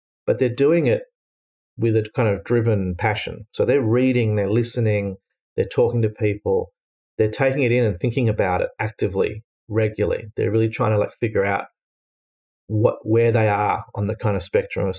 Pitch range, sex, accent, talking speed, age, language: 105-120 Hz, male, Australian, 185 wpm, 40-59, English